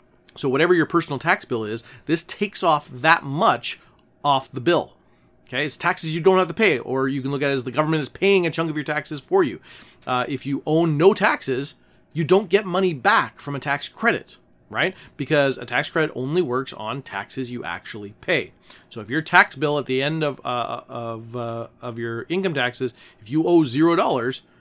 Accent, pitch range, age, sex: American, 120-160 Hz, 30-49, male